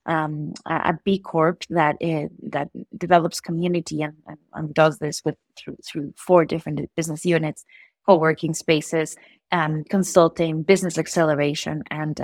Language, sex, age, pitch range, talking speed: English, female, 30-49, 155-185 Hz, 135 wpm